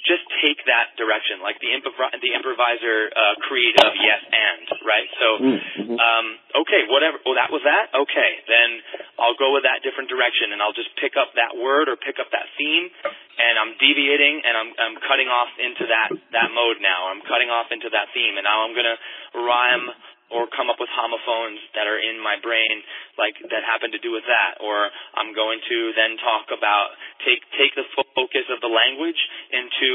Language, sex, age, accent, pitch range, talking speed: English, male, 20-39, American, 115-135 Hz, 200 wpm